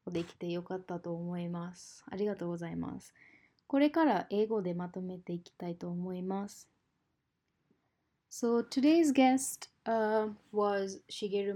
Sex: female